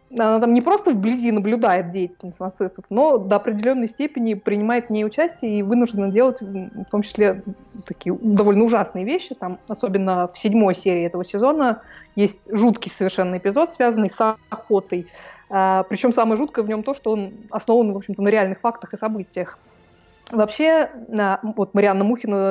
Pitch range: 195-235 Hz